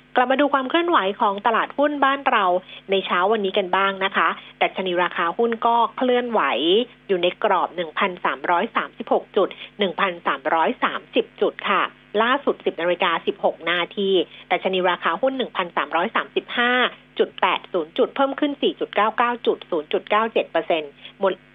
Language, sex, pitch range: Thai, female, 190-270 Hz